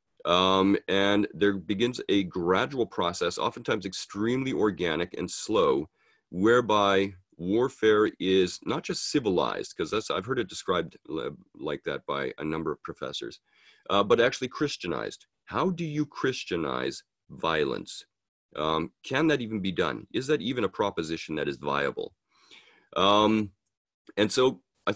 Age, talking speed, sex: 40-59, 135 wpm, male